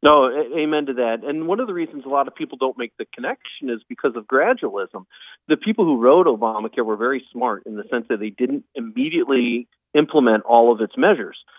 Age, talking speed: 40-59, 210 wpm